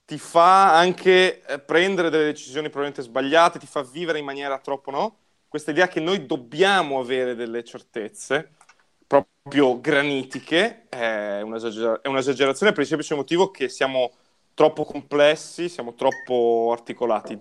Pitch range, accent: 120-155 Hz, native